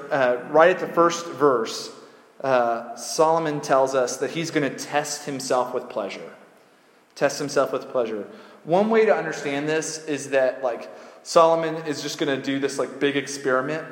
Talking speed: 175 wpm